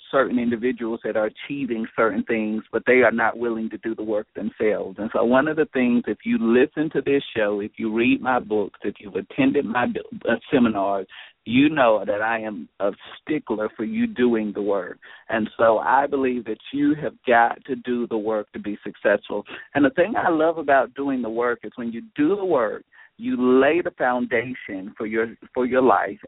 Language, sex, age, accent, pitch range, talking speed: English, male, 50-69, American, 110-140 Hz, 205 wpm